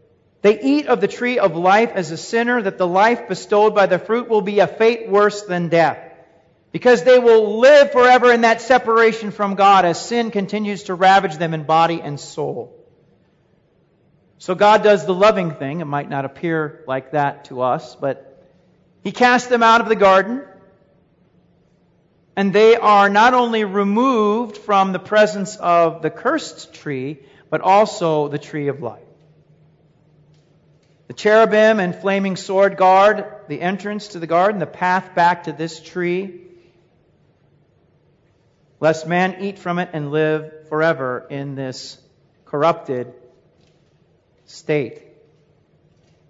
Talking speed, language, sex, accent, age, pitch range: 150 wpm, English, male, American, 40-59, 155-220 Hz